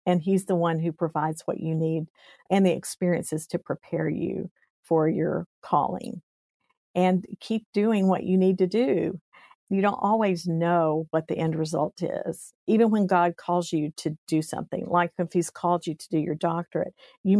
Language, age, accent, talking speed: English, 50-69, American, 185 wpm